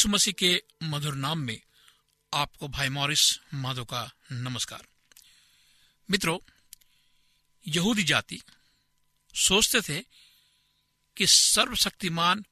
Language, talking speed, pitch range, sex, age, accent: Hindi, 80 wpm, 145-200 Hz, male, 60-79, native